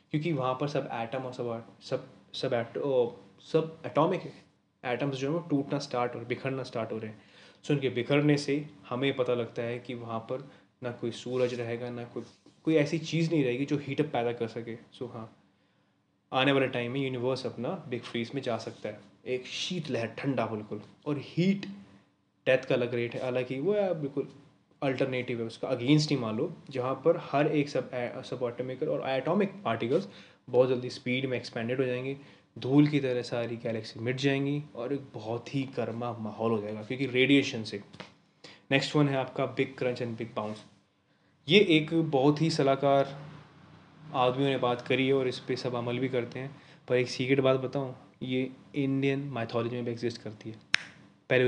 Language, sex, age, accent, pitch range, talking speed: Hindi, male, 20-39, native, 120-140 Hz, 195 wpm